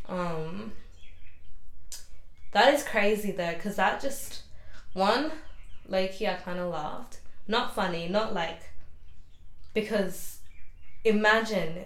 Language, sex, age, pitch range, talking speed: English, female, 20-39, 165-210 Hz, 105 wpm